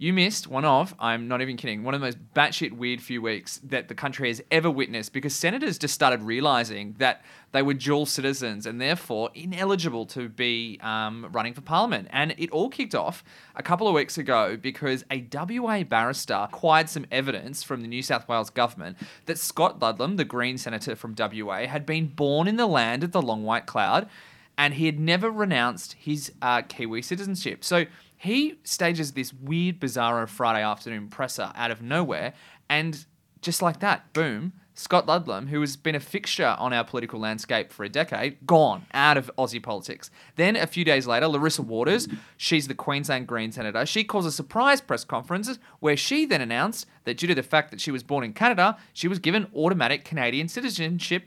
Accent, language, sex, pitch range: Australian, English, male, 125-170 Hz